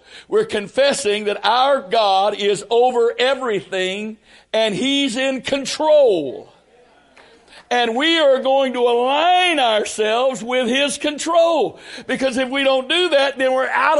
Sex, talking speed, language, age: male, 135 wpm, English, 60-79